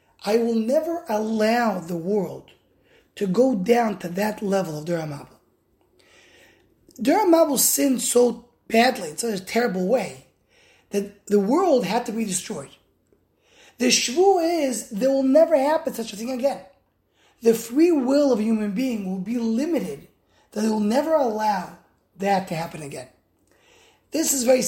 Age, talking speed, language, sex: 30-49, 160 wpm, English, male